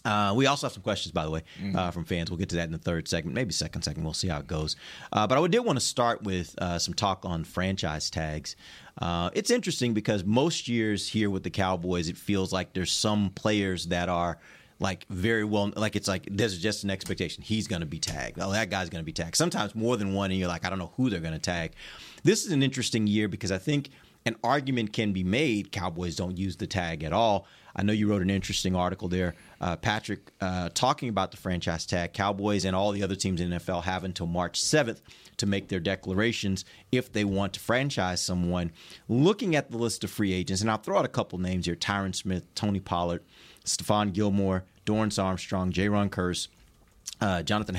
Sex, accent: male, American